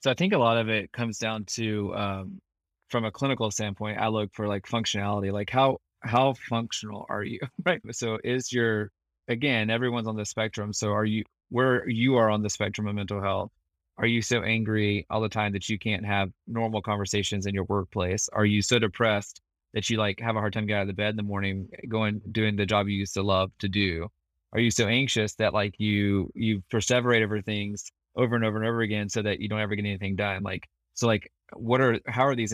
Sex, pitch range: male, 100-115 Hz